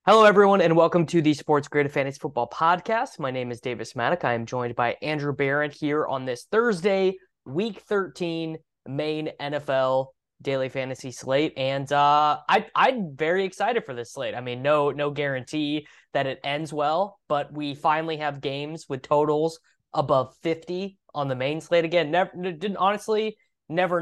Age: 20-39